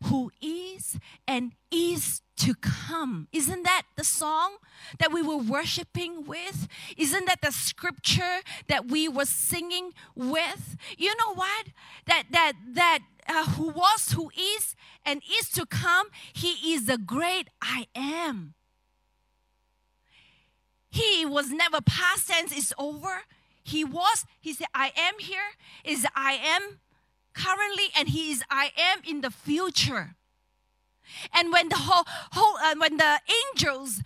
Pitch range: 265-365 Hz